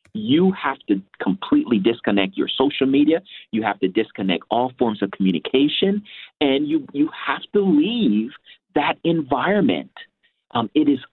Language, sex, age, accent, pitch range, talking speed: English, male, 50-69, American, 105-170 Hz, 145 wpm